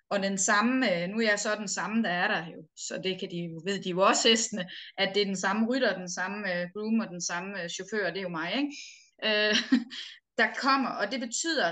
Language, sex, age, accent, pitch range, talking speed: Danish, female, 20-39, native, 185-240 Hz, 235 wpm